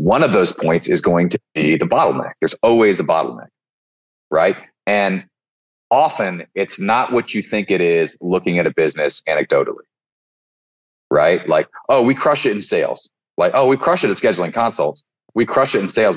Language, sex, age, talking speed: English, male, 30-49, 185 wpm